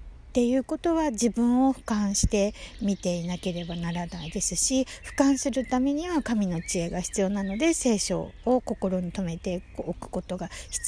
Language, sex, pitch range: Japanese, female, 165-230 Hz